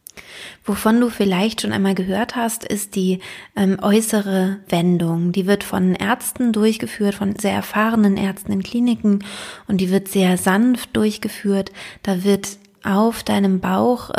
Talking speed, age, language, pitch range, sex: 145 wpm, 20-39, German, 190-215 Hz, female